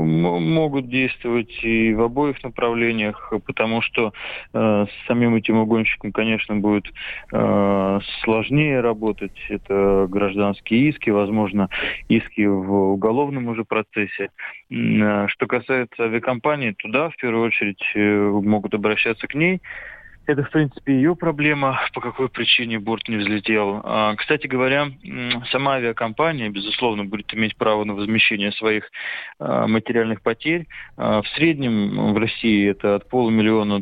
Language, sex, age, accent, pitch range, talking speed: Russian, male, 20-39, native, 105-125 Hz, 130 wpm